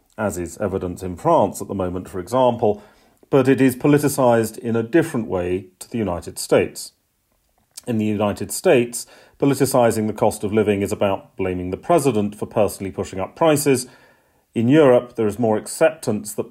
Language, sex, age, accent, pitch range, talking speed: English, male, 40-59, British, 95-120 Hz, 175 wpm